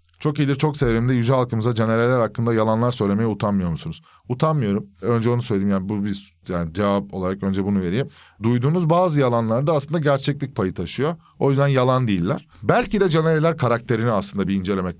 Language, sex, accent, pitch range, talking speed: Turkish, male, native, 100-135 Hz, 175 wpm